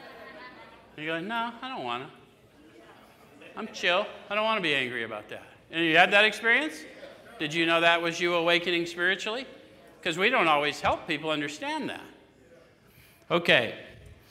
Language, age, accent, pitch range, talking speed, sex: English, 50-69, American, 155-195 Hz, 165 wpm, male